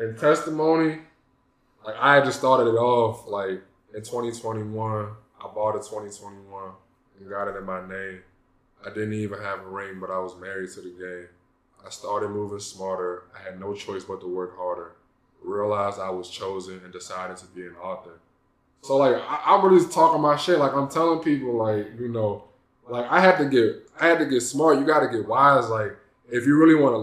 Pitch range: 95-125 Hz